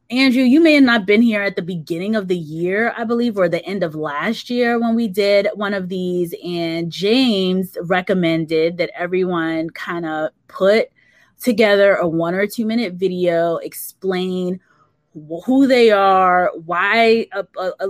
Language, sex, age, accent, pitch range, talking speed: English, female, 20-39, American, 165-225 Hz, 165 wpm